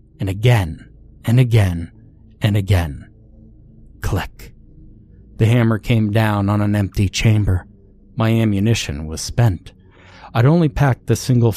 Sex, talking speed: male, 125 wpm